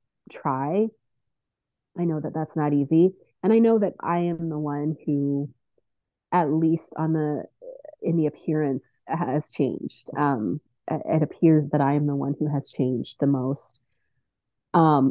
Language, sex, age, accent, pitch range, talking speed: English, female, 30-49, American, 140-165 Hz, 155 wpm